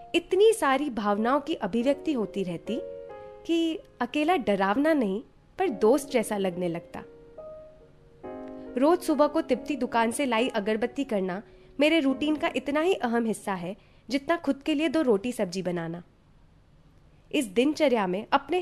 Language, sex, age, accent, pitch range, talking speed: Hindi, female, 20-39, native, 205-310 Hz, 145 wpm